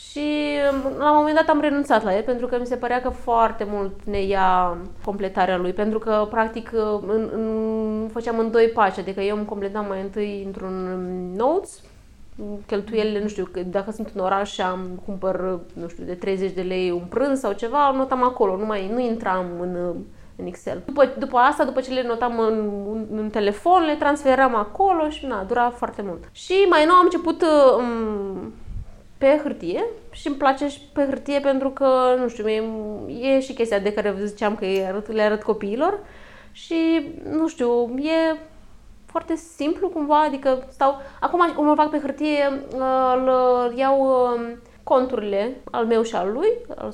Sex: female